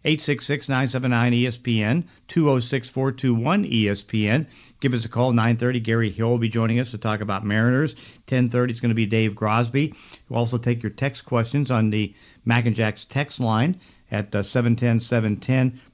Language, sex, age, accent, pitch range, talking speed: English, male, 50-69, American, 110-125 Hz, 155 wpm